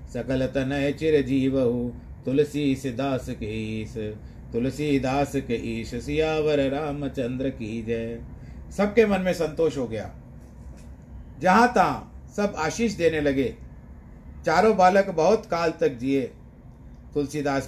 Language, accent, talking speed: Hindi, native, 115 wpm